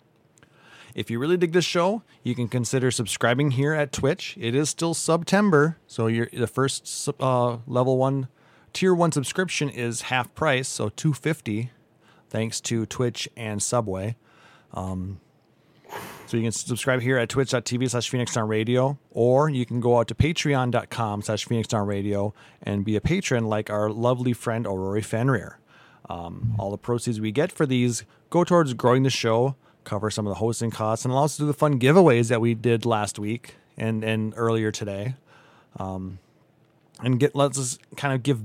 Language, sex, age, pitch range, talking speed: English, male, 30-49, 110-140 Hz, 170 wpm